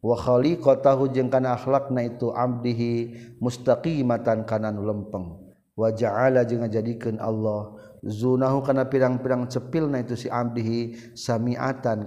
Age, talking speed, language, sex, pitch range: 50-69, 120 wpm, Indonesian, male, 110-140 Hz